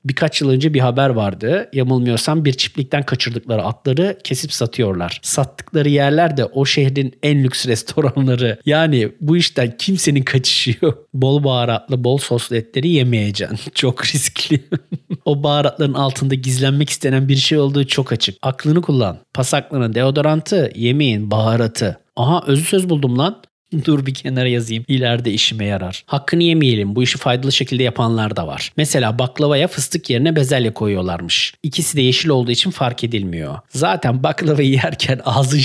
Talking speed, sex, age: 150 wpm, male, 40-59